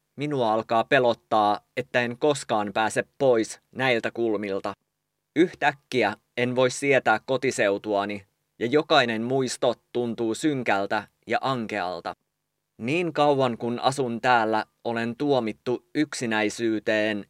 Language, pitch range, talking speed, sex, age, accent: English, 110-130 Hz, 105 wpm, male, 20-39, Finnish